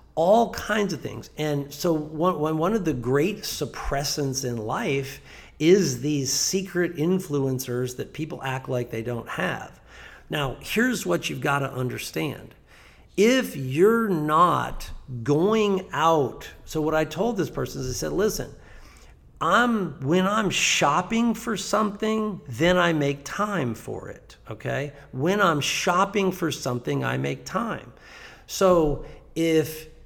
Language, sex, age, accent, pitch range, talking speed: English, male, 50-69, American, 125-175 Hz, 140 wpm